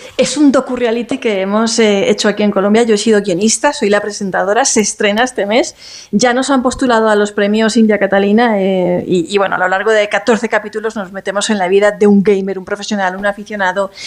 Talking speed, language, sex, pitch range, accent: 220 wpm, Spanish, female, 190-220 Hz, Spanish